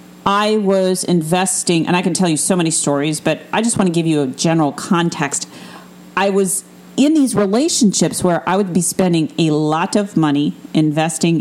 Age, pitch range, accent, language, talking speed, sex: 40-59, 155-195 Hz, American, English, 190 wpm, female